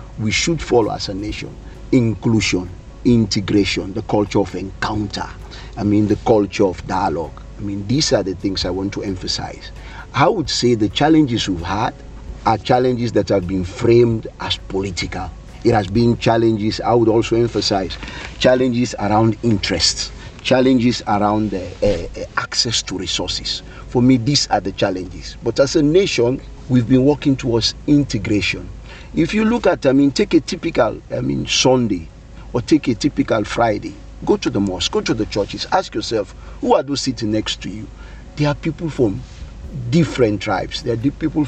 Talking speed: 170 wpm